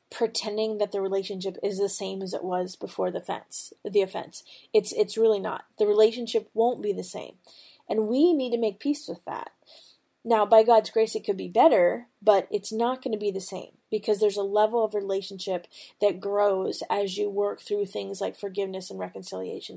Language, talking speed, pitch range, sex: English, 200 wpm, 200-240 Hz, female